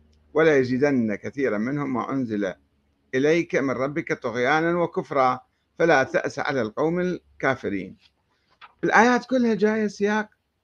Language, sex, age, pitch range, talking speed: Arabic, male, 50-69, 115-170 Hz, 115 wpm